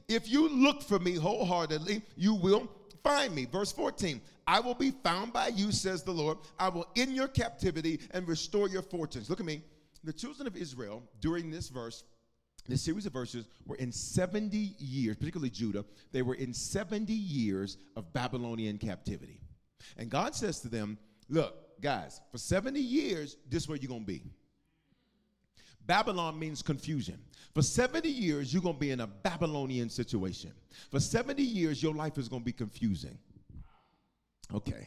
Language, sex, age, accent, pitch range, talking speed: English, male, 40-59, American, 130-210 Hz, 170 wpm